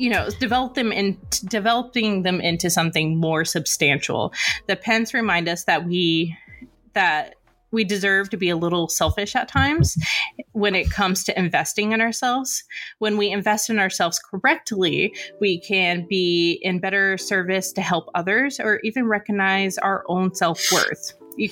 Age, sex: 20-39, female